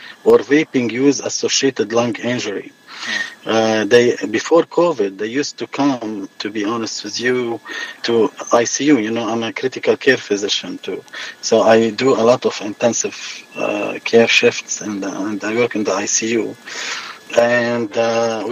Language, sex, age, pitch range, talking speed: Arabic, male, 40-59, 115-150 Hz, 150 wpm